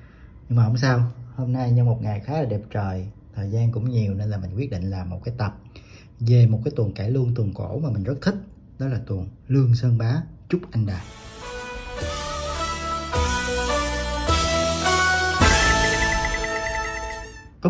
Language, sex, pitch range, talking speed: Vietnamese, male, 105-130 Hz, 165 wpm